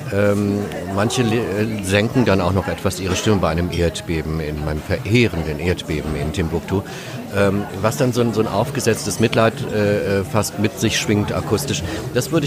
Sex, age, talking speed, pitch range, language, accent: male, 50-69, 170 wpm, 95-115 Hz, German, German